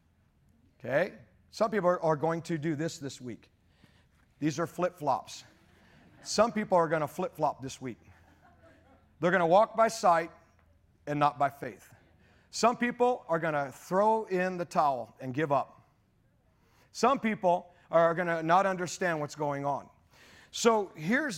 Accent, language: American, English